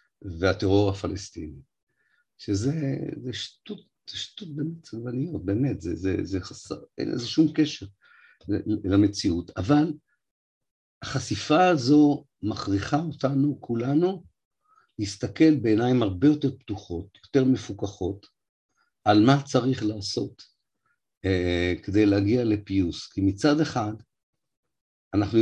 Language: Hebrew